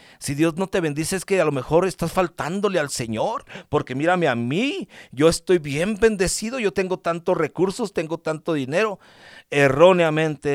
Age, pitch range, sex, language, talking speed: 50-69, 130-165 Hz, male, English, 170 wpm